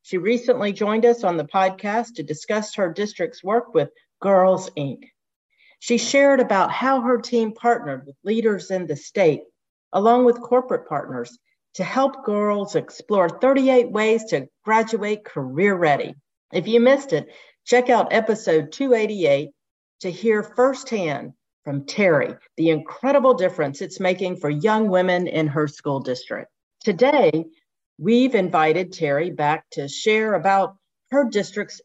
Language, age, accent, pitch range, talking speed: English, 50-69, American, 160-230 Hz, 145 wpm